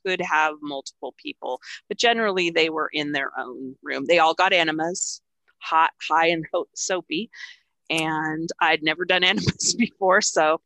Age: 30-49